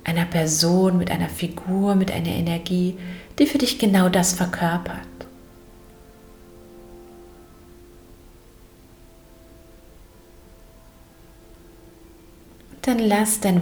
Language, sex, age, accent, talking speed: German, female, 30-49, German, 75 wpm